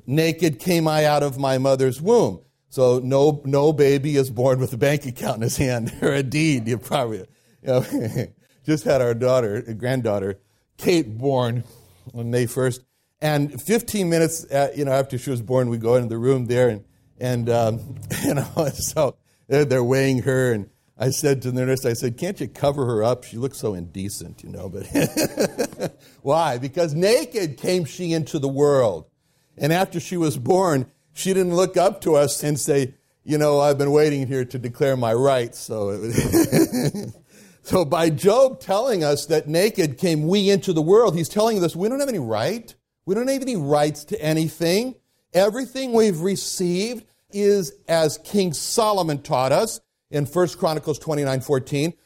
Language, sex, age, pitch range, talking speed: English, male, 60-79, 130-175 Hz, 185 wpm